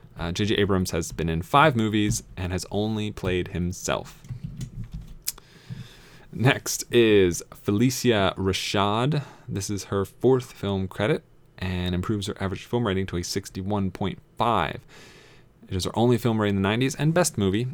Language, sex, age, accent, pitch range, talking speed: English, male, 30-49, American, 95-125 Hz, 150 wpm